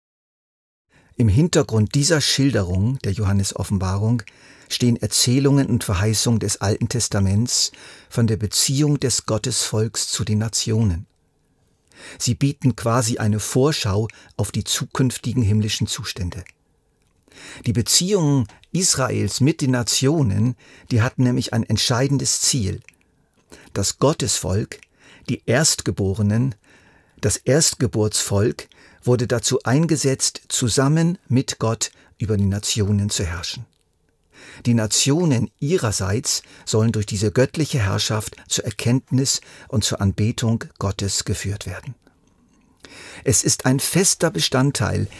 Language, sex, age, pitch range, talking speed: German, male, 50-69, 105-130 Hz, 110 wpm